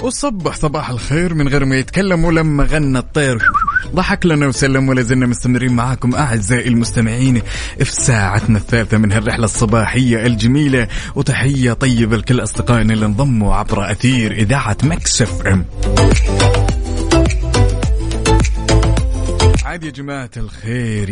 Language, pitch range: Arabic, 105-125 Hz